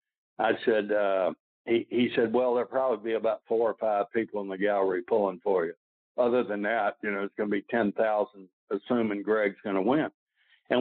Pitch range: 105-125 Hz